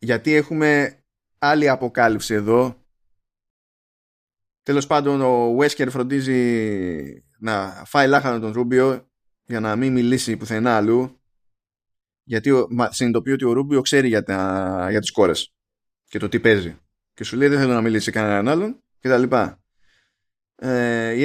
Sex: male